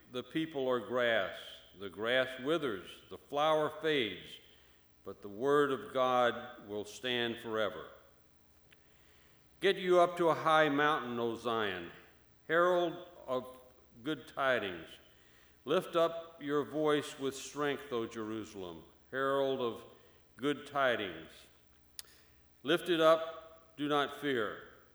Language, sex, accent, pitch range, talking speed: English, male, American, 105-140 Hz, 120 wpm